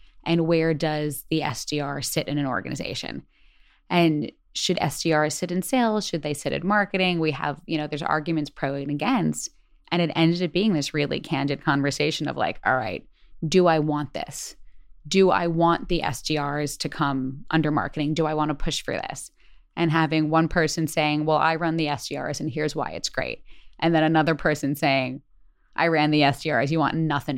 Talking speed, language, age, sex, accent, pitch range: 195 wpm, English, 20-39, female, American, 145-175 Hz